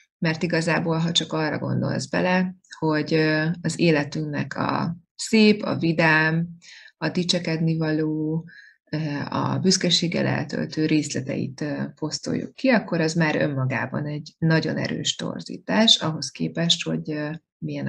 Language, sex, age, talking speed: Hungarian, female, 30-49, 115 wpm